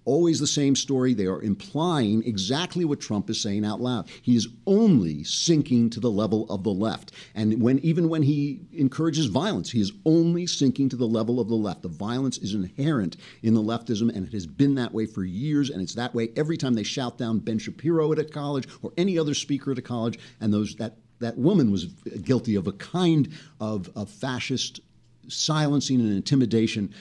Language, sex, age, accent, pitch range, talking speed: English, male, 50-69, American, 105-145 Hz, 205 wpm